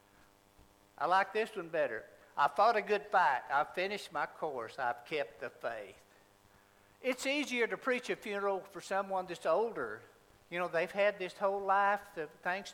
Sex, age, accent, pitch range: male, 60-79, American, 135-220 Hz